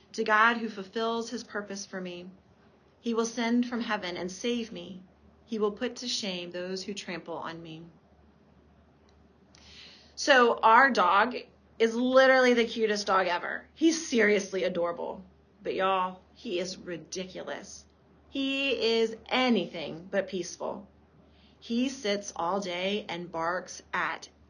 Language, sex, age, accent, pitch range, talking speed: English, female, 30-49, American, 190-240 Hz, 130 wpm